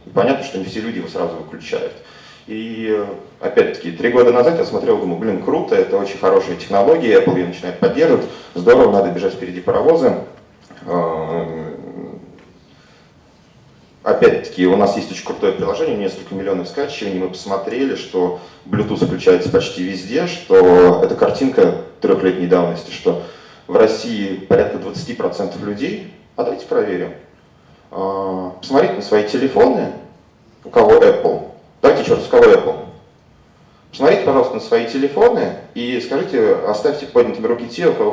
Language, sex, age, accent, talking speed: Russian, male, 30-49, native, 135 wpm